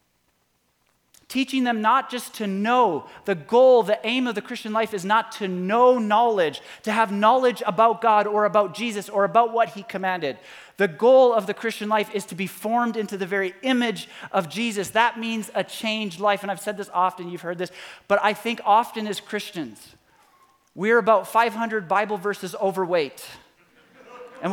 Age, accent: 30-49, American